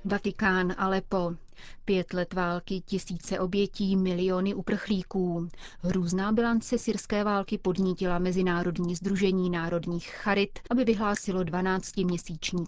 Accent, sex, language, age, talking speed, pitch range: native, female, Czech, 30-49, 100 wpm, 175-210 Hz